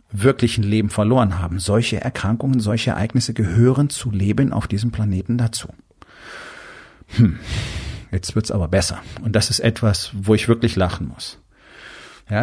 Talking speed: 150 wpm